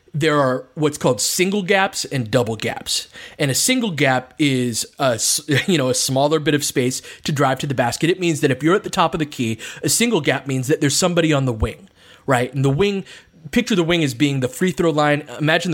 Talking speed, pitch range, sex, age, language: 230 wpm, 125-160 Hz, male, 20-39, English